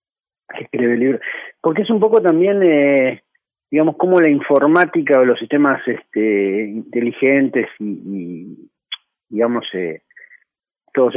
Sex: male